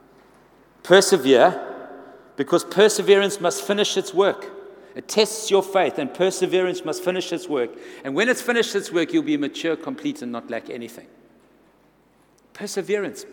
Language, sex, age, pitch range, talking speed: English, male, 60-79, 160-260 Hz, 145 wpm